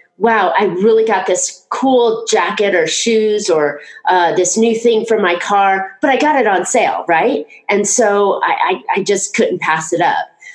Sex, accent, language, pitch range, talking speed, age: female, American, English, 175-265 Hz, 195 wpm, 30-49